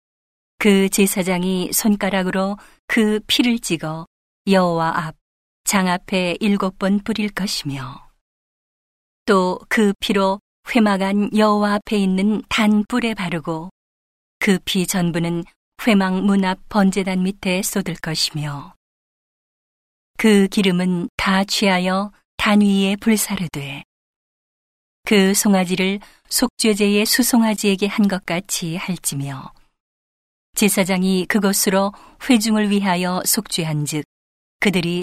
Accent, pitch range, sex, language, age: native, 175-210 Hz, female, Korean, 40-59